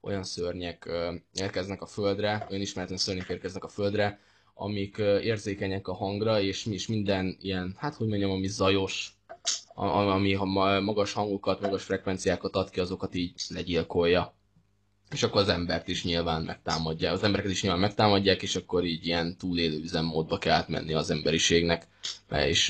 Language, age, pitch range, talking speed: Hungarian, 20-39, 90-105 Hz, 150 wpm